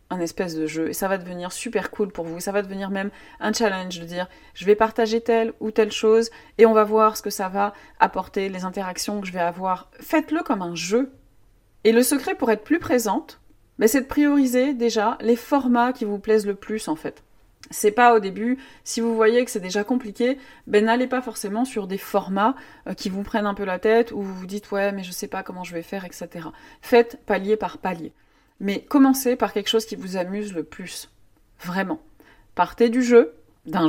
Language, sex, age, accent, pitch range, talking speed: French, female, 30-49, French, 185-230 Hz, 220 wpm